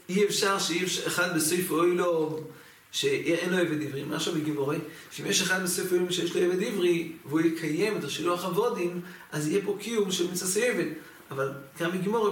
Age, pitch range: 40-59, 160-200 Hz